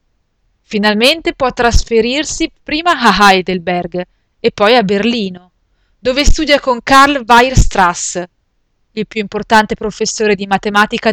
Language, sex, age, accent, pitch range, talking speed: Italian, female, 30-49, native, 200-250 Hz, 115 wpm